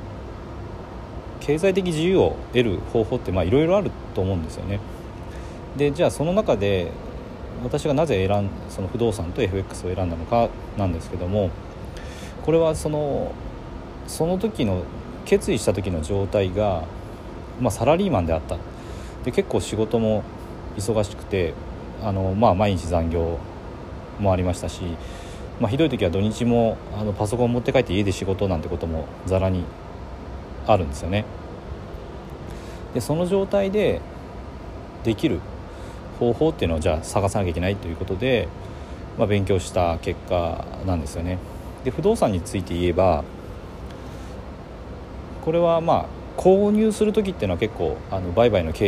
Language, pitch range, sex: Japanese, 85-115 Hz, male